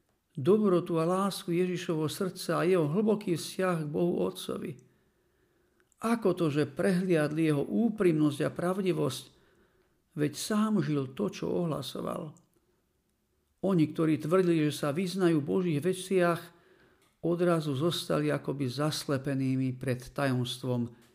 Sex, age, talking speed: male, 50-69, 115 wpm